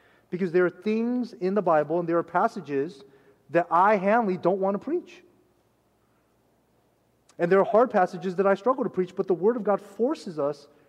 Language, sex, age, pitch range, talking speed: English, male, 30-49, 145-190 Hz, 195 wpm